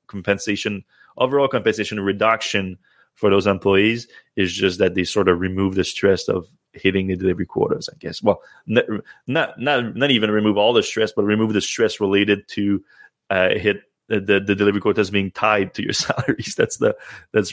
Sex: male